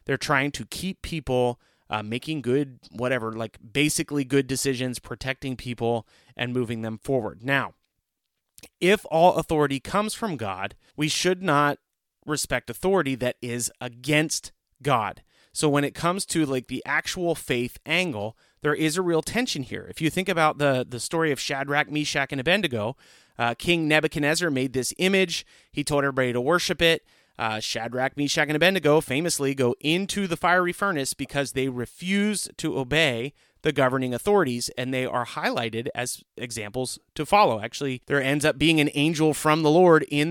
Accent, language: American, English